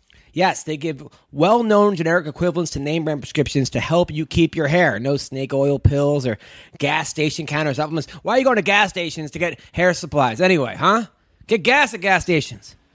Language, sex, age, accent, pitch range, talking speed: English, male, 20-39, American, 145-190 Hz, 195 wpm